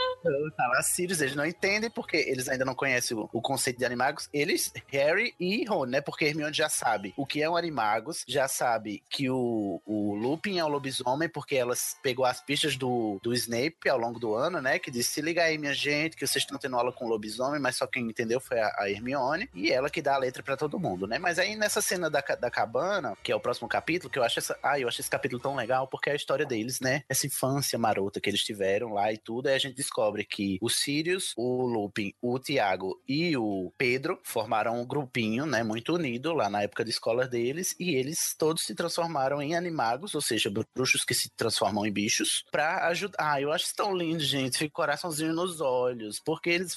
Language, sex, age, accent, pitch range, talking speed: Portuguese, male, 20-39, Brazilian, 125-165 Hz, 230 wpm